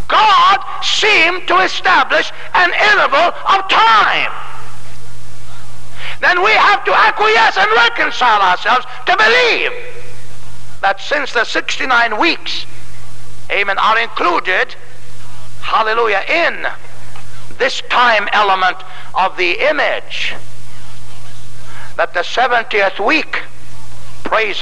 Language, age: English, 60-79